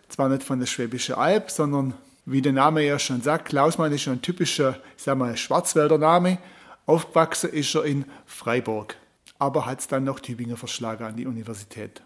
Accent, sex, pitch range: German, male, 135-170 Hz